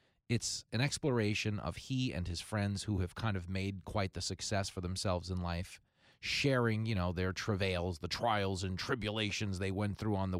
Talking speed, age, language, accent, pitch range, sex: 195 wpm, 30-49, English, American, 90-115 Hz, male